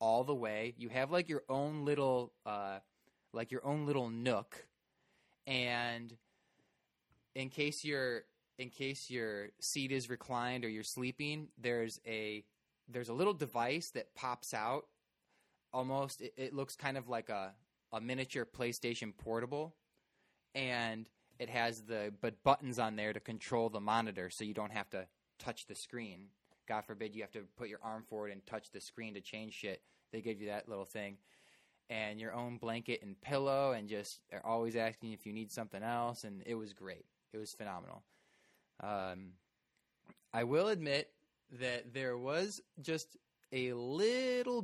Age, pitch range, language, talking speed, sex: 20-39, 110-135 Hz, English, 170 wpm, male